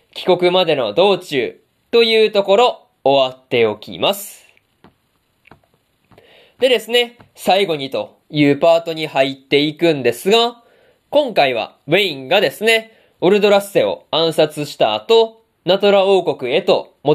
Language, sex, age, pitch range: Japanese, male, 20-39, 160-230 Hz